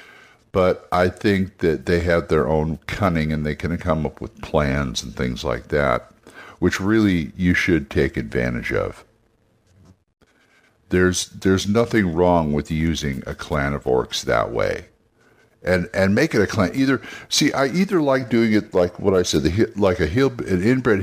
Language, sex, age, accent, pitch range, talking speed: English, male, 60-79, American, 75-110 Hz, 175 wpm